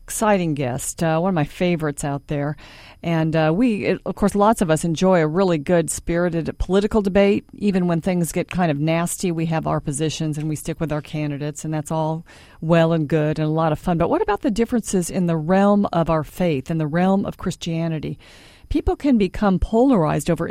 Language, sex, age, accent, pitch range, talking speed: English, female, 50-69, American, 160-200 Hz, 215 wpm